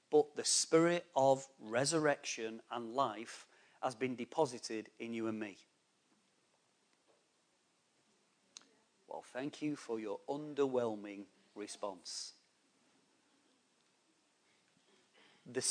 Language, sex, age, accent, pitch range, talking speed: English, male, 40-59, British, 120-155 Hz, 85 wpm